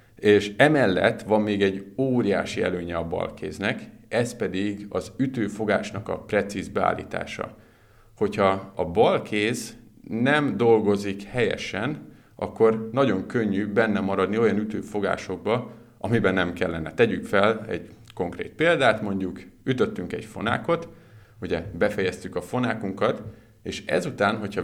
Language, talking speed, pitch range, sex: Hungarian, 115 wpm, 95-110 Hz, male